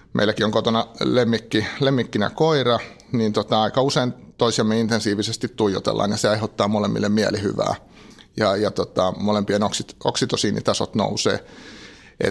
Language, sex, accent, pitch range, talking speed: Finnish, male, native, 105-120 Hz, 120 wpm